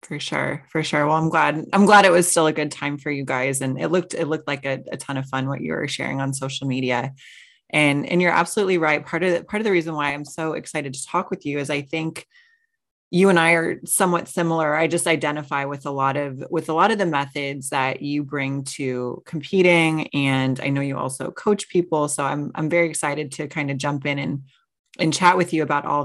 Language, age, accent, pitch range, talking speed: English, 20-39, American, 145-170 Hz, 245 wpm